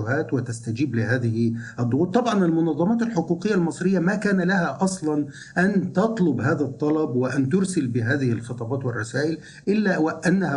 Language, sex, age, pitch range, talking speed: Arabic, male, 50-69, 130-190 Hz, 125 wpm